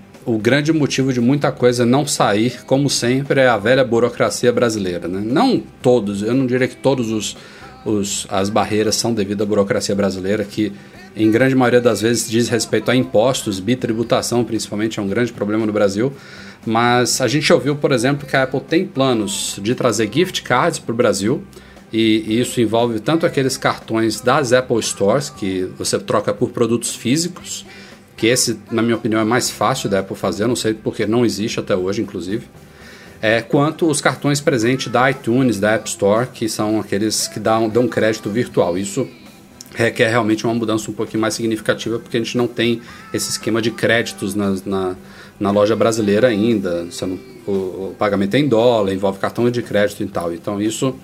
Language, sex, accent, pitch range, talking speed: Portuguese, male, Brazilian, 105-125 Hz, 185 wpm